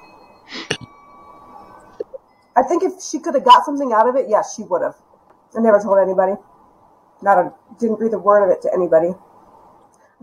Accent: American